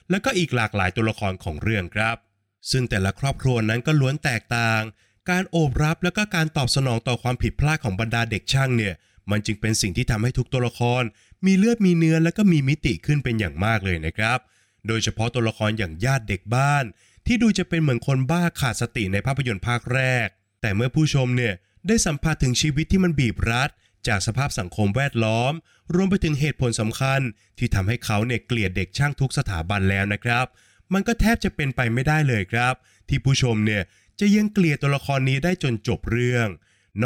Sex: male